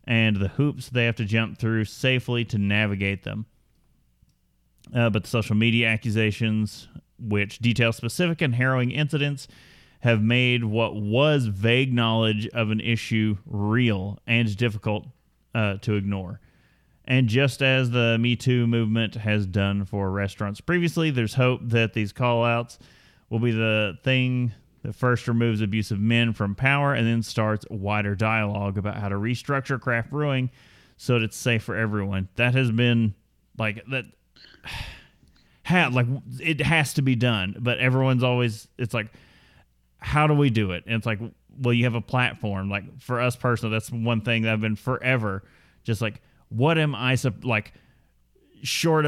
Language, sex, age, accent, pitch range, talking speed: English, male, 30-49, American, 110-125 Hz, 160 wpm